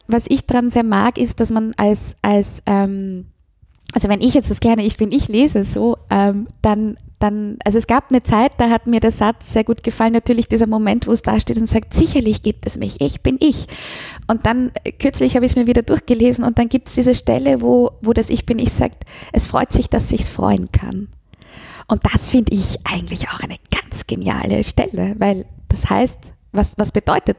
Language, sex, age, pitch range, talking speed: German, female, 20-39, 205-250 Hz, 215 wpm